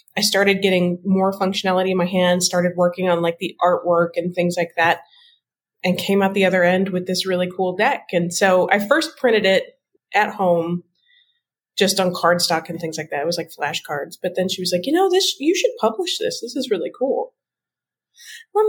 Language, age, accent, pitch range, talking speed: English, 20-39, American, 175-230 Hz, 210 wpm